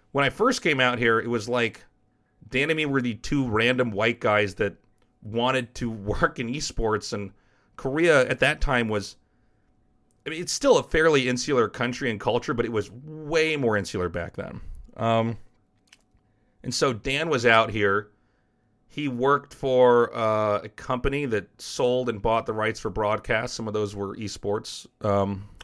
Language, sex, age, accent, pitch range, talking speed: English, male, 30-49, American, 105-125 Hz, 175 wpm